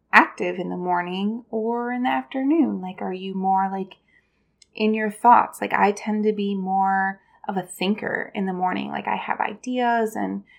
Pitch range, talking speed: 185-215 Hz, 185 wpm